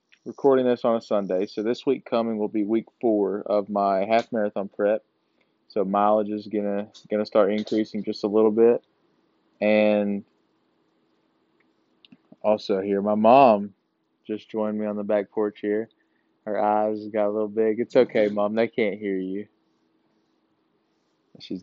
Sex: male